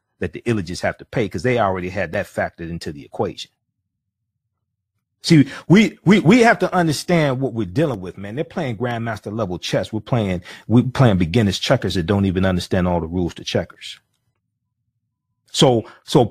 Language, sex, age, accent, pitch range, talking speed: English, male, 40-59, American, 105-140 Hz, 180 wpm